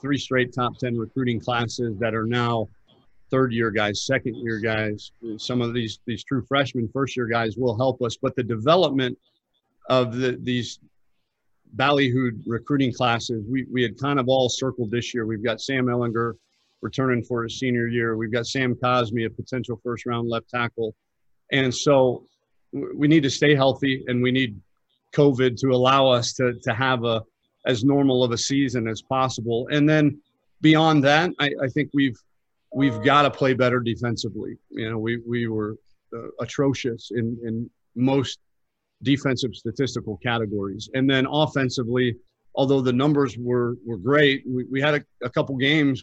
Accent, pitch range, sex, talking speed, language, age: American, 115-135 Hz, male, 165 wpm, English, 50-69